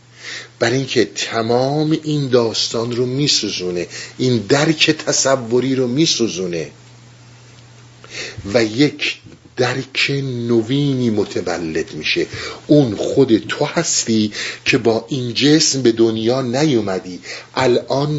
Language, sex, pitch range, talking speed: Persian, male, 120-150 Hz, 100 wpm